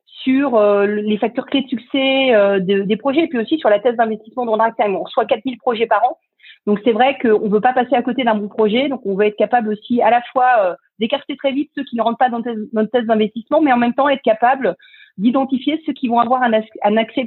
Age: 40-59